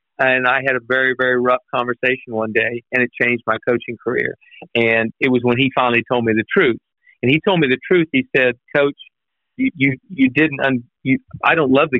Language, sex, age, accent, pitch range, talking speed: English, male, 50-69, American, 125-160 Hz, 215 wpm